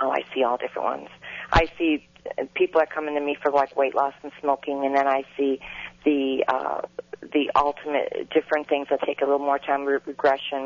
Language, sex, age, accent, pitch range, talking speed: English, female, 40-59, American, 135-150 Hz, 205 wpm